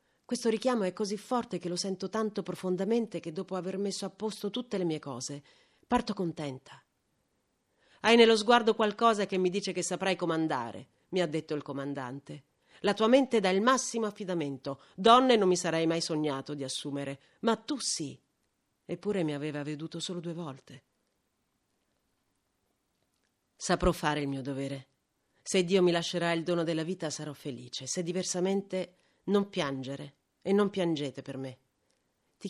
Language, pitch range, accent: Italian, 150-215 Hz, native